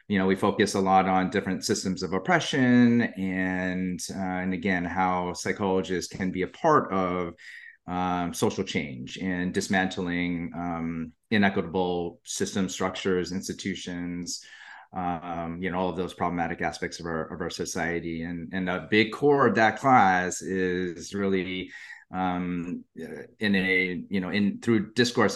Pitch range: 90-100 Hz